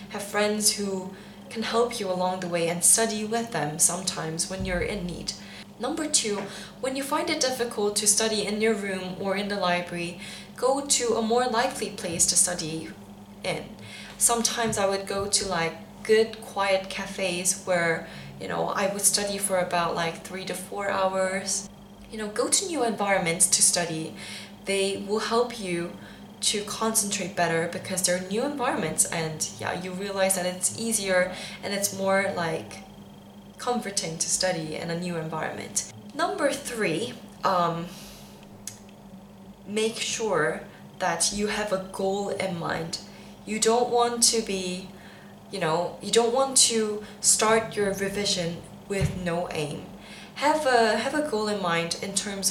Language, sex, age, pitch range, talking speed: English, female, 10-29, 180-220 Hz, 160 wpm